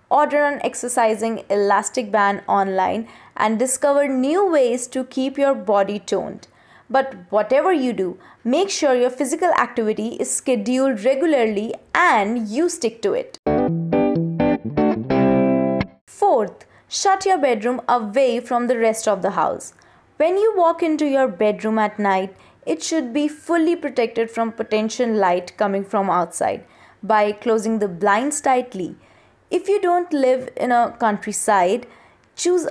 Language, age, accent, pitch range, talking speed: English, 20-39, Indian, 205-275 Hz, 140 wpm